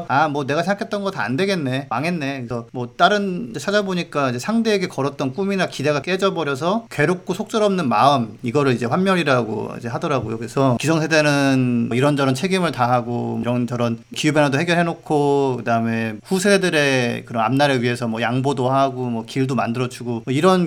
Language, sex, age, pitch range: Korean, male, 40-59, 125-175 Hz